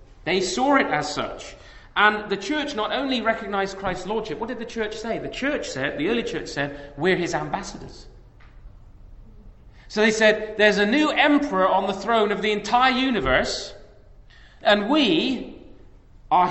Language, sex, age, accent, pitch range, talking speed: English, male, 30-49, British, 125-205 Hz, 165 wpm